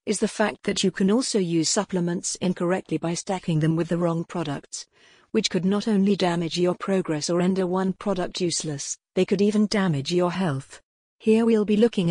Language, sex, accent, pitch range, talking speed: English, female, British, 170-200 Hz, 195 wpm